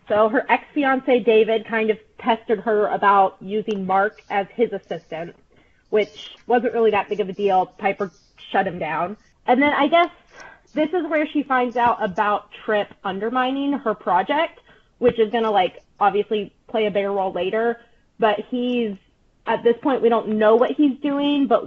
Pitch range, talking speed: 205-250 Hz, 175 wpm